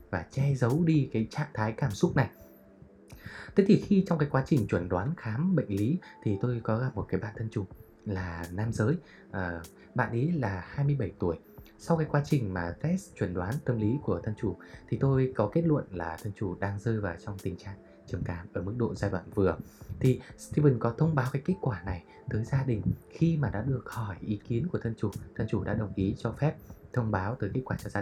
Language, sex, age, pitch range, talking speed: Vietnamese, male, 20-39, 100-140 Hz, 240 wpm